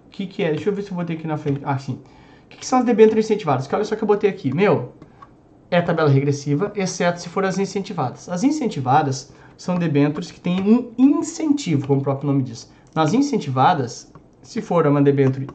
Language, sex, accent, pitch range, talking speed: Portuguese, male, Brazilian, 150-215 Hz, 210 wpm